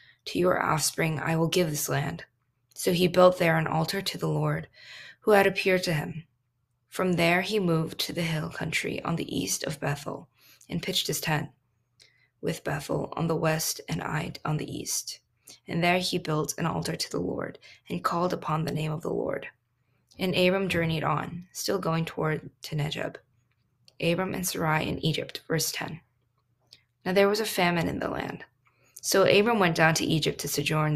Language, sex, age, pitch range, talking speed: English, female, 20-39, 145-185 Hz, 190 wpm